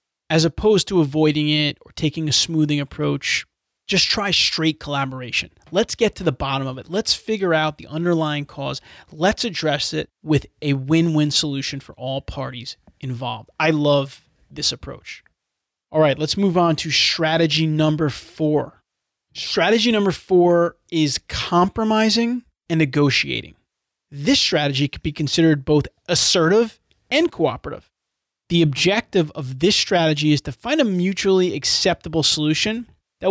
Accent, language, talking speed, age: American, English, 145 wpm, 30-49